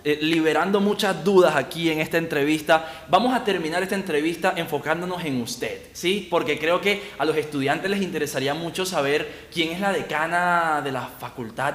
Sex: male